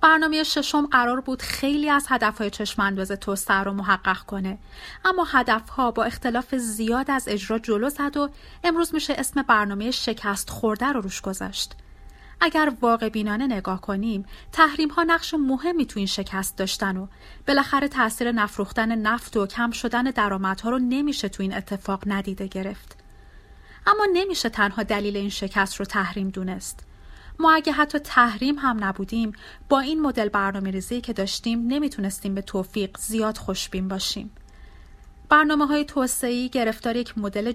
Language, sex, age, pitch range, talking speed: Persian, female, 30-49, 205-275 Hz, 150 wpm